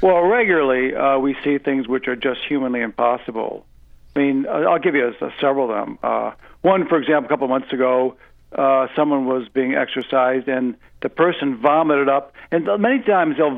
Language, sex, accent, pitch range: English, male, American, 125-150 Hz